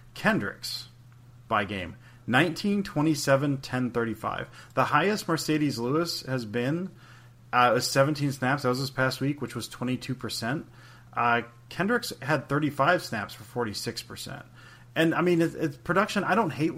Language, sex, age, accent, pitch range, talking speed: English, male, 30-49, American, 115-145 Hz, 160 wpm